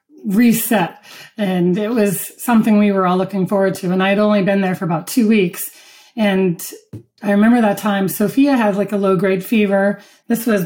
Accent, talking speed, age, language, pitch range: American, 195 wpm, 30-49, English, 185-215 Hz